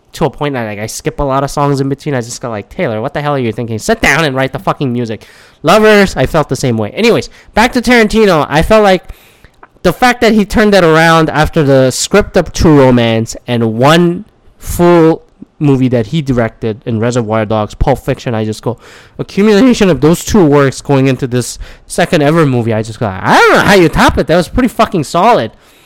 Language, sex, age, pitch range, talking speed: English, male, 20-39, 125-170 Hz, 225 wpm